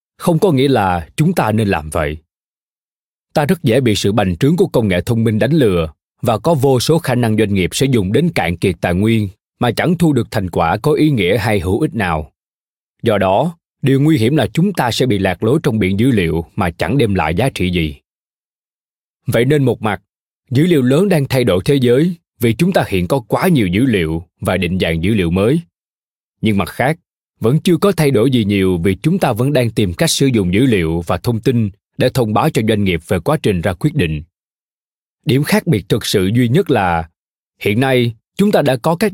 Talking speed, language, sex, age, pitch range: 235 wpm, Vietnamese, male, 20-39, 95-145 Hz